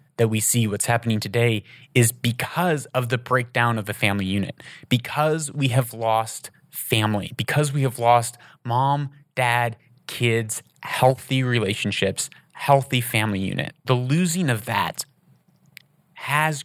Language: English